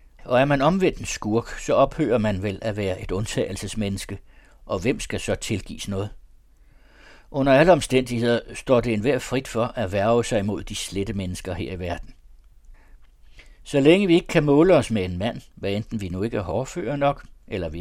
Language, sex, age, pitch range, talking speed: Danish, male, 60-79, 95-120 Hz, 195 wpm